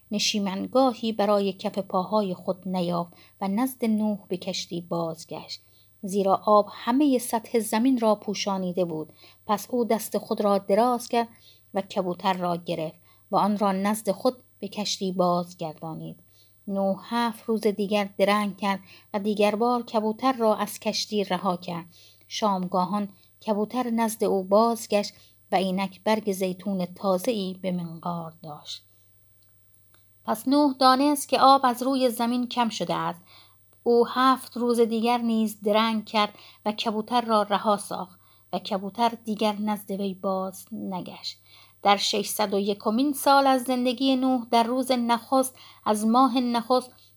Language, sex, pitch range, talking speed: Persian, female, 190-235 Hz, 140 wpm